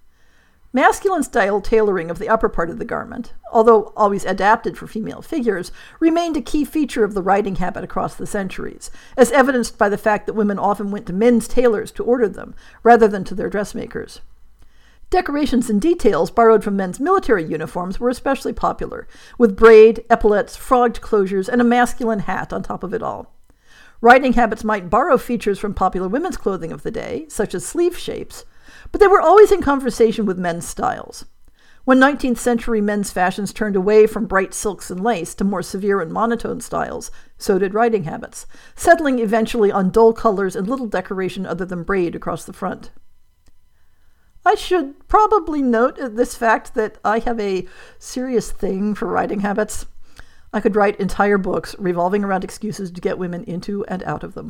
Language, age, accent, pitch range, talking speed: English, 50-69, American, 195-245 Hz, 180 wpm